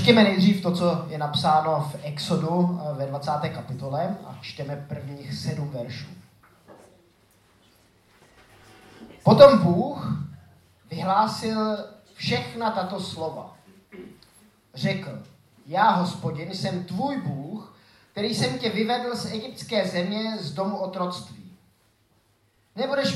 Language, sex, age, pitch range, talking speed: Czech, male, 30-49, 155-210 Hz, 100 wpm